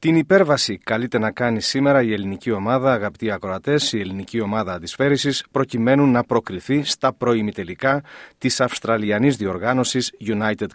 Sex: male